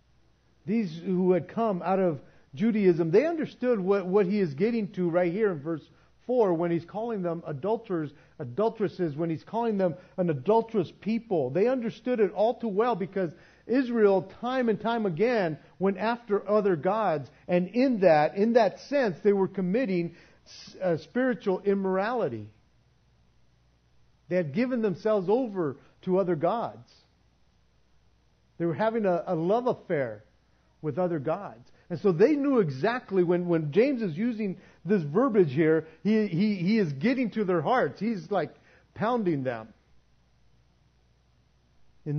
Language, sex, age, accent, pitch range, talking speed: English, male, 50-69, American, 135-205 Hz, 145 wpm